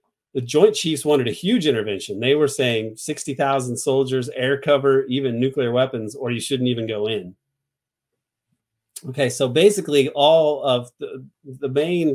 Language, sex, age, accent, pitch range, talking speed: English, male, 30-49, American, 120-145 Hz, 155 wpm